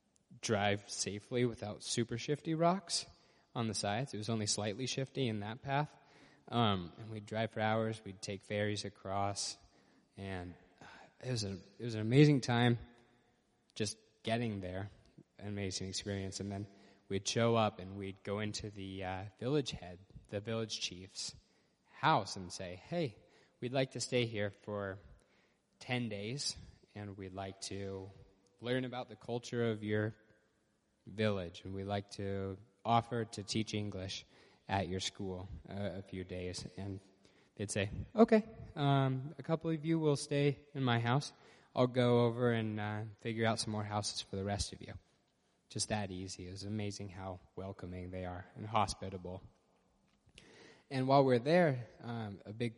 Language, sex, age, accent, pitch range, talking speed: English, male, 20-39, American, 95-120 Hz, 160 wpm